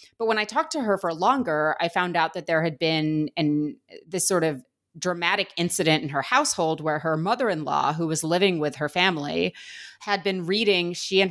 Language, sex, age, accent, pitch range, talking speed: English, female, 30-49, American, 155-200 Hz, 195 wpm